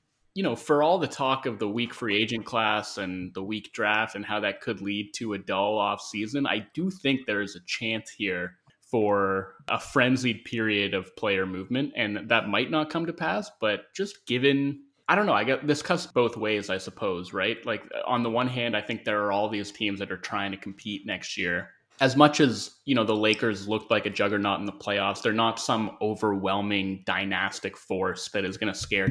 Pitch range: 100-120 Hz